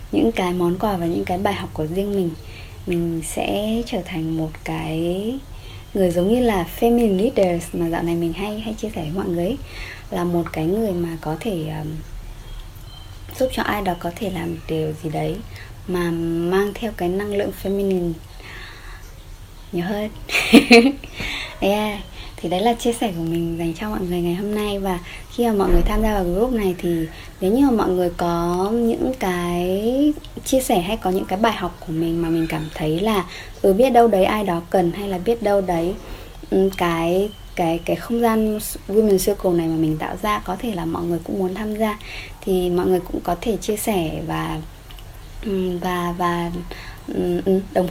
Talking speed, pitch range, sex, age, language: 195 wpm, 165-210 Hz, male, 20-39, Vietnamese